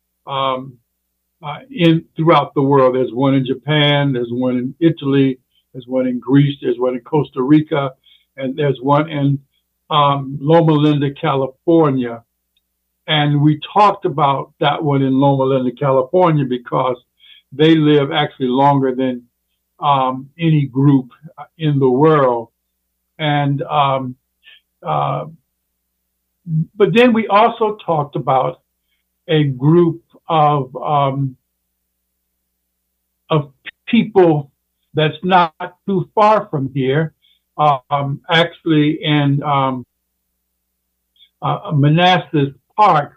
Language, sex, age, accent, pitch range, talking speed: English, male, 60-79, American, 130-160 Hz, 115 wpm